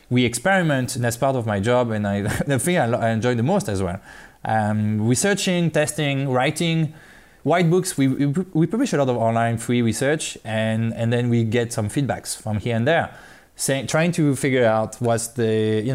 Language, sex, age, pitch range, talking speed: English, male, 20-39, 115-150 Hz, 195 wpm